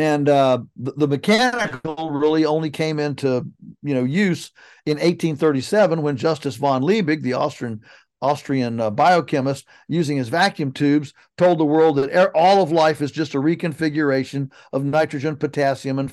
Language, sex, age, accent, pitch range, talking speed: English, male, 50-69, American, 135-165 Hz, 160 wpm